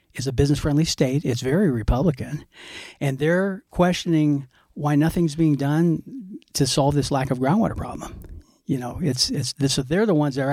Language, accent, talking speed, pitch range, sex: English, American, 180 wpm, 130-160 Hz, male